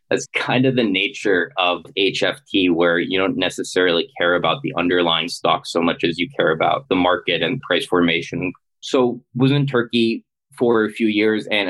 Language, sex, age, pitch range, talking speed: English, male, 20-39, 90-125 Hz, 185 wpm